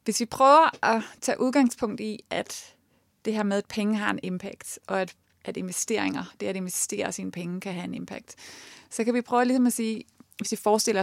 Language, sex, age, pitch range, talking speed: Danish, female, 30-49, 195-230 Hz, 205 wpm